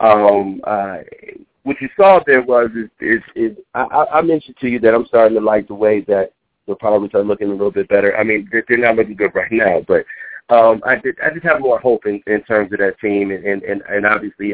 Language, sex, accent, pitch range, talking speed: English, male, American, 100-115 Hz, 240 wpm